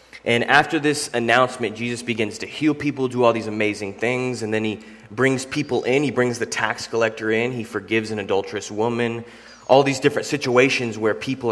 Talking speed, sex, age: 195 wpm, male, 20-39